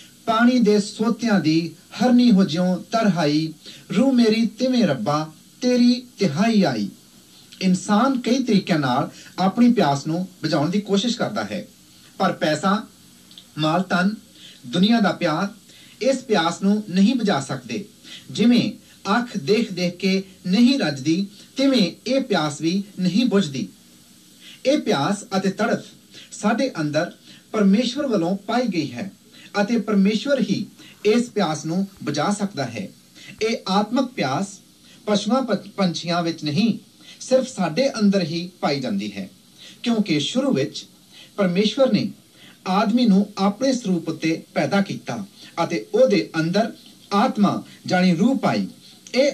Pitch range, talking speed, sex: 175-230 Hz, 80 wpm, male